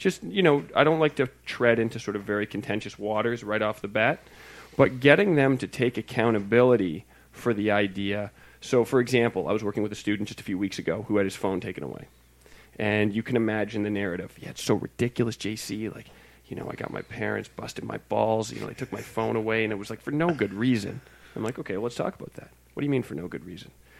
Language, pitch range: English, 100-130 Hz